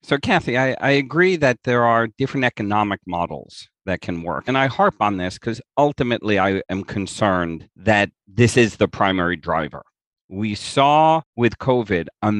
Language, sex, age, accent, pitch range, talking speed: English, male, 50-69, American, 95-125 Hz, 170 wpm